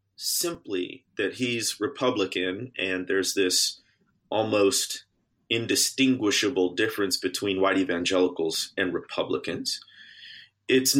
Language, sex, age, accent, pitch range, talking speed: English, male, 30-49, American, 110-140 Hz, 85 wpm